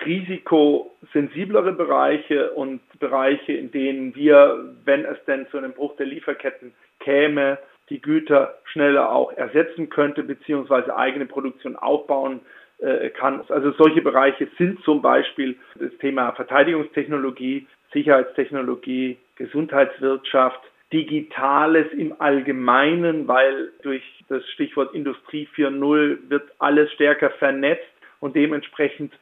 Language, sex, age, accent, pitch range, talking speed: German, male, 40-59, German, 140-165 Hz, 115 wpm